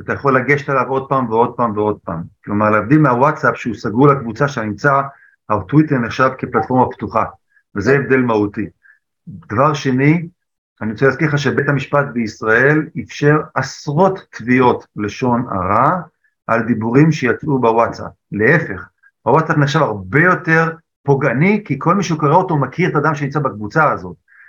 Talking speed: 145 wpm